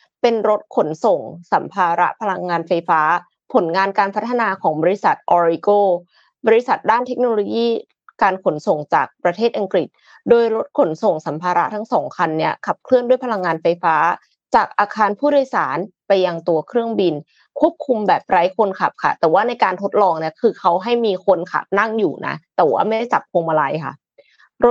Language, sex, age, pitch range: Thai, female, 20-39, 180-245 Hz